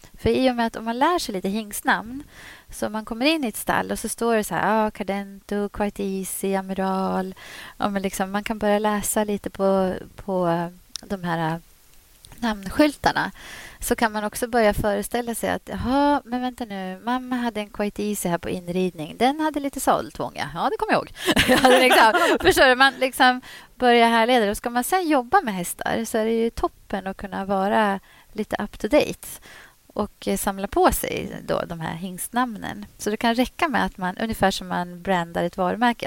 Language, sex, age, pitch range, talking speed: Swedish, female, 30-49, 190-240 Hz, 190 wpm